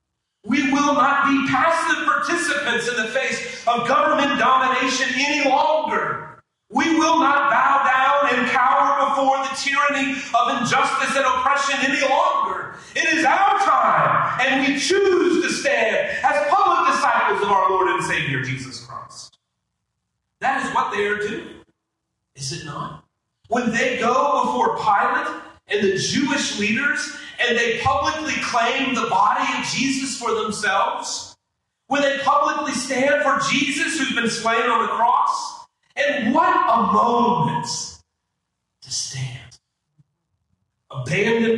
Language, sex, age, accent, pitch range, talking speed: English, male, 40-59, American, 235-290 Hz, 140 wpm